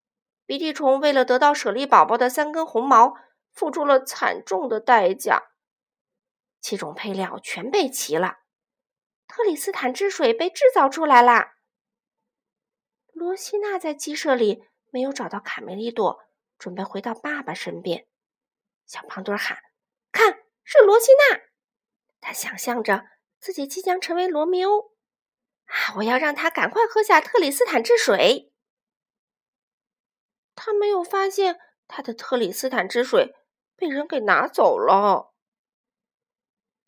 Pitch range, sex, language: 245-385 Hz, female, Chinese